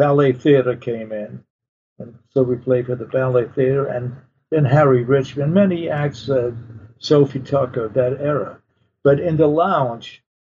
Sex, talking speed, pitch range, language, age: male, 155 wpm, 125-145 Hz, English, 50-69